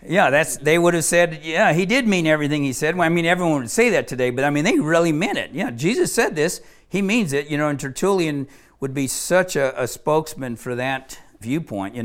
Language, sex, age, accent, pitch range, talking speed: English, male, 50-69, American, 130-165 Hz, 245 wpm